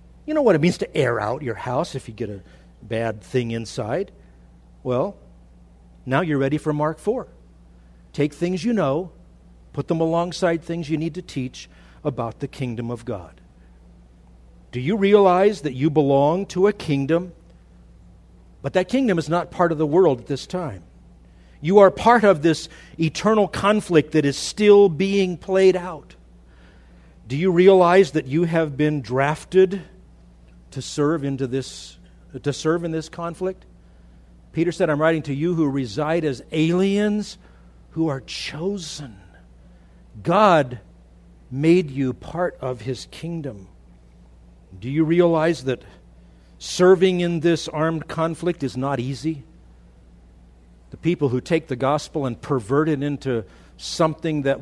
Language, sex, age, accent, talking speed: English, male, 50-69, American, 145 wpm